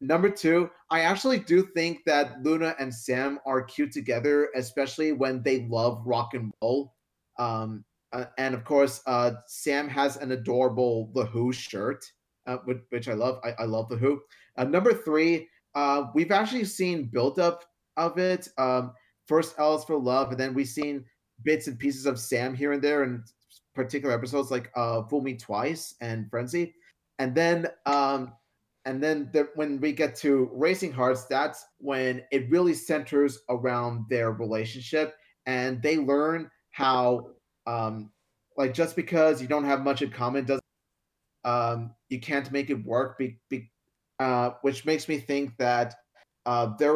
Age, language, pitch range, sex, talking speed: 30-49, English, 125-155 Hz, male, 165 wpm